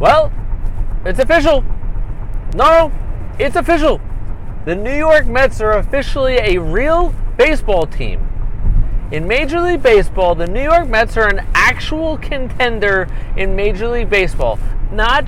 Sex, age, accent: male, 40-59, American